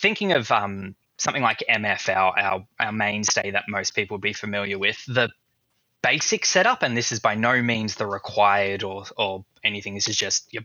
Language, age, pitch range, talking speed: English, 10-29, 100-115 Hz, 190 wpm